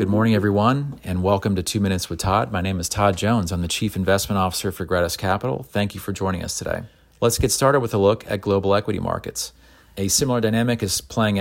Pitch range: 90-105 Hz